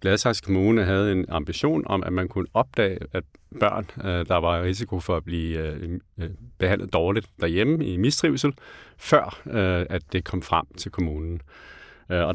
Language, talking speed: Danish, 155 wpm